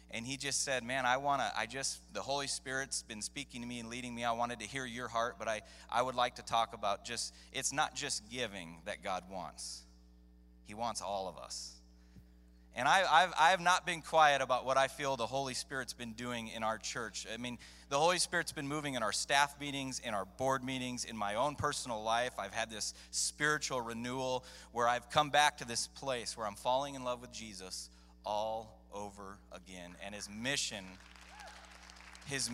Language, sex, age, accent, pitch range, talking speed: English, male, 30-49, American, 105-130 Hz, 205 wpm